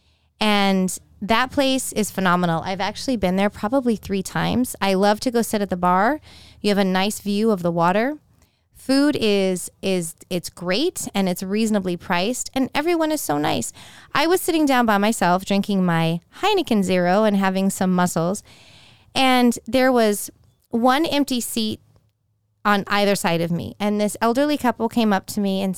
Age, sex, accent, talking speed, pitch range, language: 20-39, female, American, 175 wpm, 190-265 Hz, English